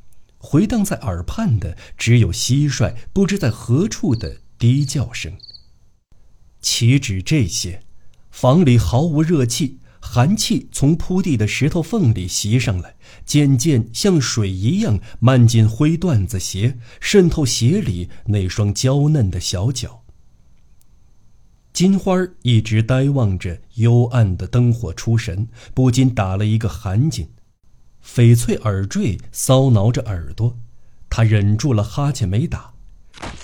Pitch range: 105-145 Hz